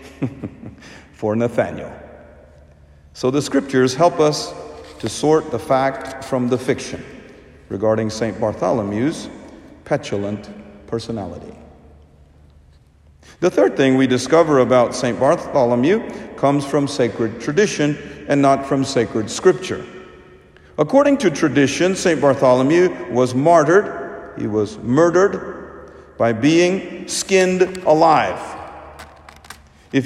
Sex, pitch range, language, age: male, 110-150 Hz, English, 50-69